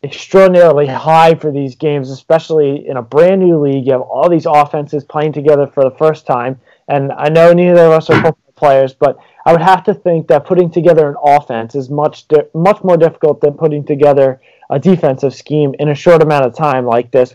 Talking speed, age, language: 210 wpm, 30-49, English